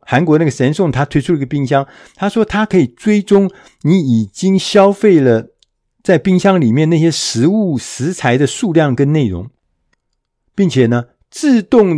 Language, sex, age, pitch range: Chinese, male, 50-69, 125-190 Hz